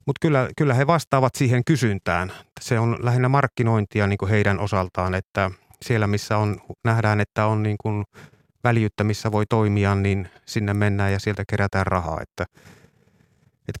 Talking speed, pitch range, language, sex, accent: 160 wpm, 100-115 Hz, Finnish, male, native